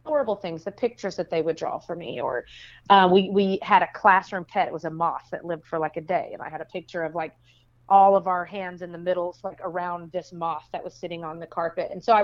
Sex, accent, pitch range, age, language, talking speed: female, American, 165-210 Hz, 30-49, English, 275 wpm